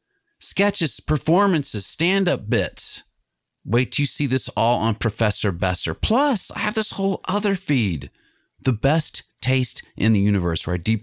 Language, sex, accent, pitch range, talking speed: English, male, American, 110-185 Hz, 160 wpm